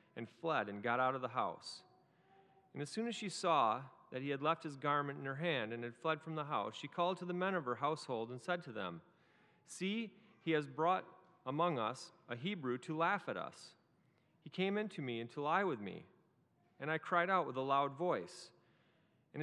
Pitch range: 120-170 Hz